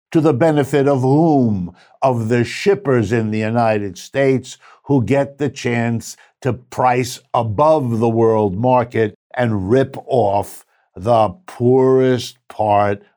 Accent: American